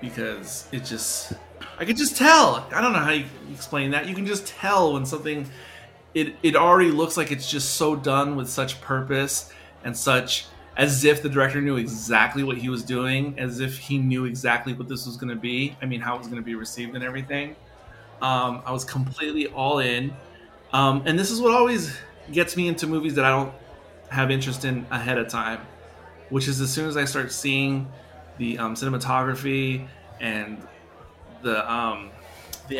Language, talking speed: English, 195 wpm